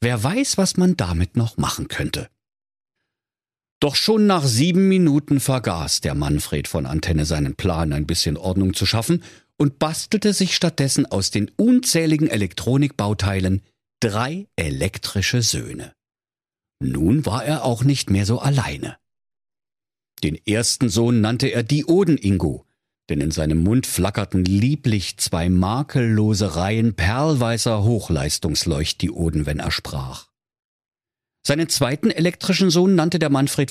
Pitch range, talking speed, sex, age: 95-145 Hz, 125 wpm, male, 50-69